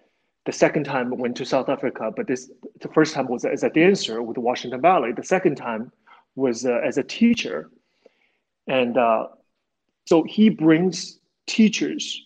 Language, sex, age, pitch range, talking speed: English, male, 30-49, 135-180 Hz, 165 wpm